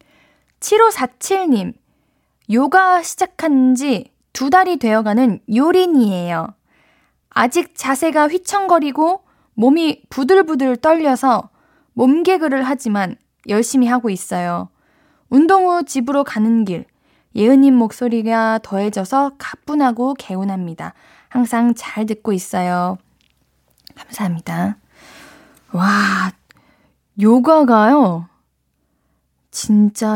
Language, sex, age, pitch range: Korean, female, 20-39, 200-290 Hz